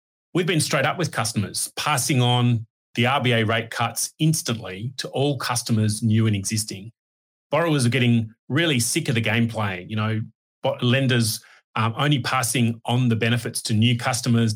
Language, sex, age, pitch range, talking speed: English, male, 30-49, 110-130 Hz, 165 wpm